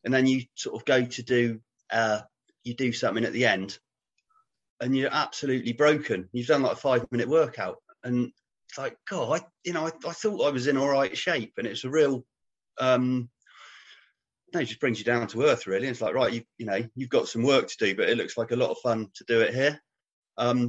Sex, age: male, 30-49